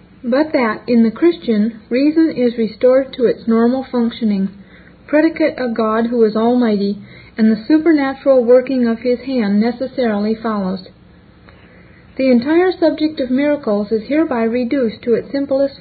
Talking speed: 145 wpm